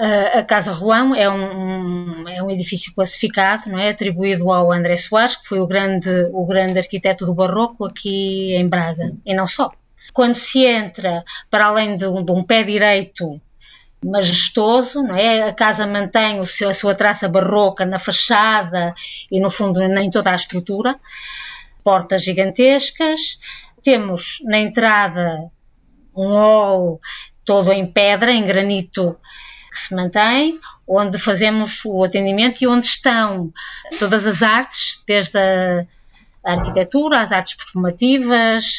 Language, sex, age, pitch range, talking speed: Portuguese, female, 20-39, 190-230 Hz, 145 wpm